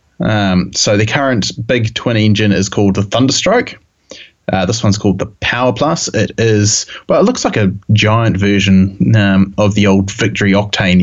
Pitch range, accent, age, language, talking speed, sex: 100-115 Hz, Australian, 20-39, English, 180 wpm, male